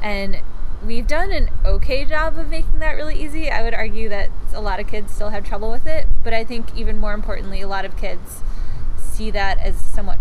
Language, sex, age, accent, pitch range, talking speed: English, female, 10-29, American, 195-230 Hz, 225 wpm